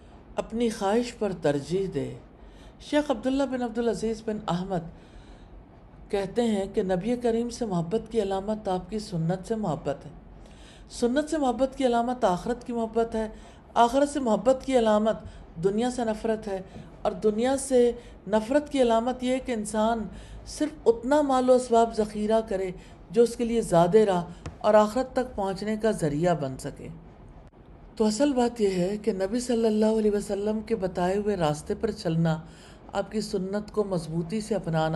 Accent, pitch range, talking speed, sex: Indian, 175-225 Hz, 140 wpm, female